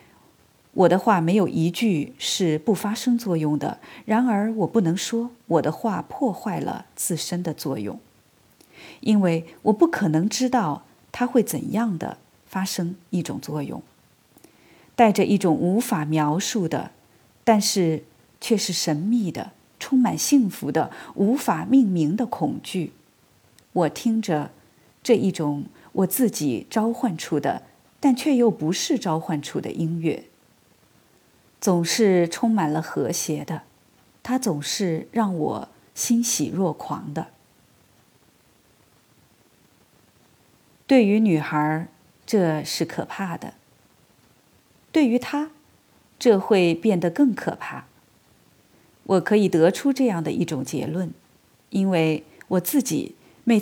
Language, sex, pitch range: Chinese, female, 165-235 Hz